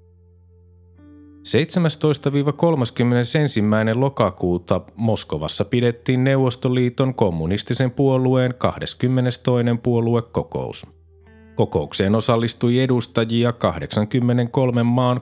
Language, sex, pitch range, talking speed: Finnish, male, 105-125 Hz, 55 wpm